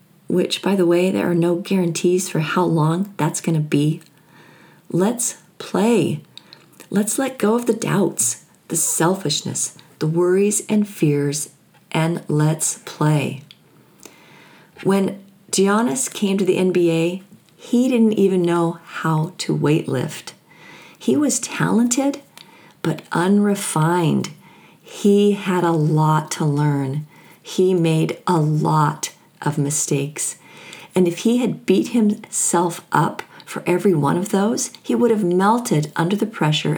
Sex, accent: female, American